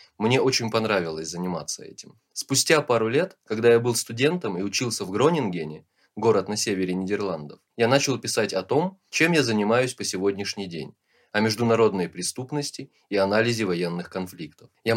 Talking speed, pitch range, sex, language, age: 155 wpm, 95-125 Hz, male, Russian, 20-39